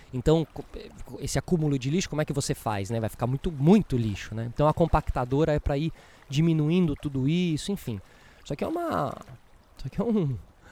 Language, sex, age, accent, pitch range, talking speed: Portuguese, male, 20-39, Brazilian, 115-150 Hz, 195 wpm